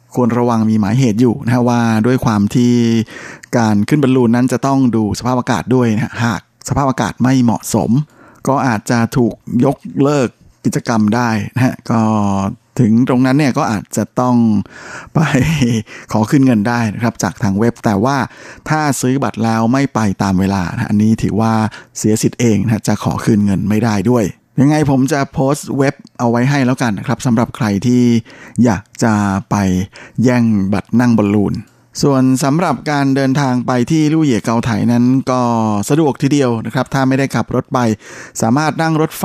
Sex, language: male, Thai